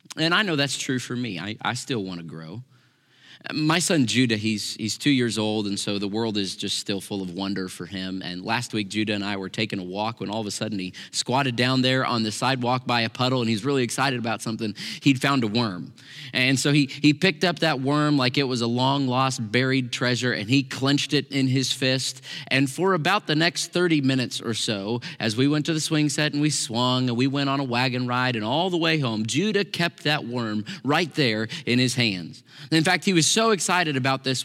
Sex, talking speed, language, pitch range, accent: male, 240 wpm, English, 115-145 Hz, American